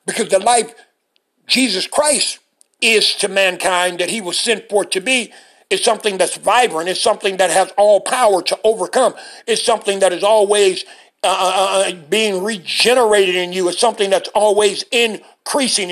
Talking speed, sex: 160 wpm, male